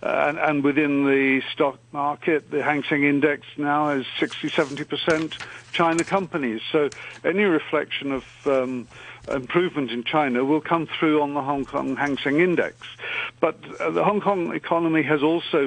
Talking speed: 170 wpm